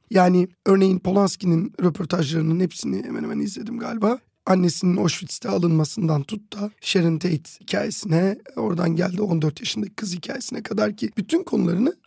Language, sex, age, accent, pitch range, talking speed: Turkish, male, 40-59, native, 175-230 Hz, 130 wpm